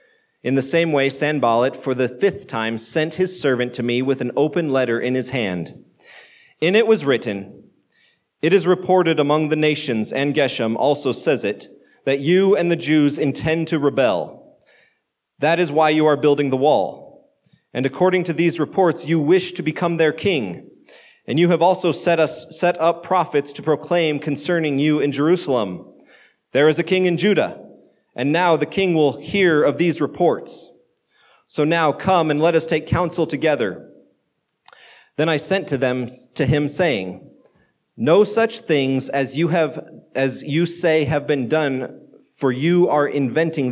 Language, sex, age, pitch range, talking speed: English, male, 30-49, 135-170 Hz, 170 wpm